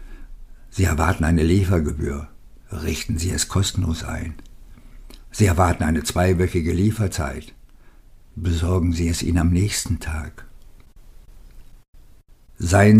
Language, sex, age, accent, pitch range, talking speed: German, male, 60-79, German, 80-105 Hz, 100 wpm